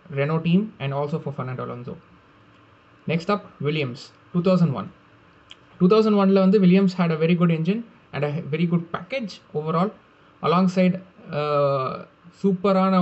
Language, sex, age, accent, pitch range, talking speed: Tamil, male, 20-39, native, 150-190 Hz, 135 wpm